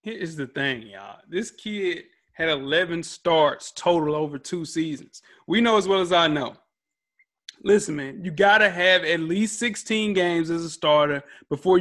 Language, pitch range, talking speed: English, 165-220 Hz, 180 wpm